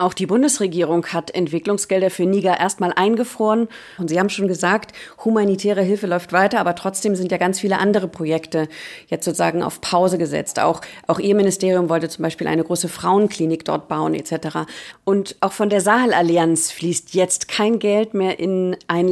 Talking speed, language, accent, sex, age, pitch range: 175 wpm, German, German, female, 40-59, 170-205 Hz